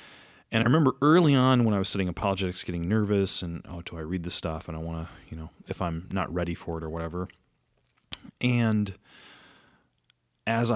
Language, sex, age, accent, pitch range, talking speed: English, male, 30-49, American, 90-115 Hz, 195 wpm